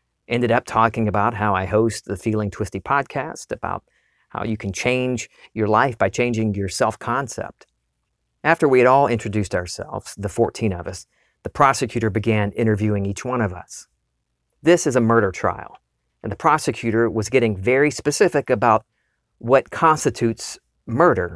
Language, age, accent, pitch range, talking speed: English, 50-69, American, 105-135 Hz, 155 wpm